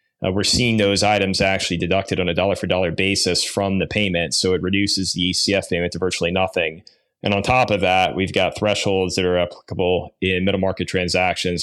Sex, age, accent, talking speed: male, 20-39, American, 205 wpm